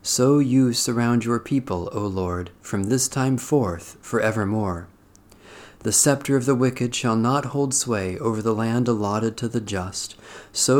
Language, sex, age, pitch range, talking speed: English, male, 40-59, 100-130 Hz, 160 wpm